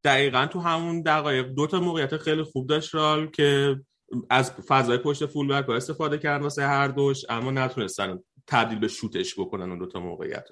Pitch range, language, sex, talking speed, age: 125-150 Hz, Persian, male, 175 wpm, 30-49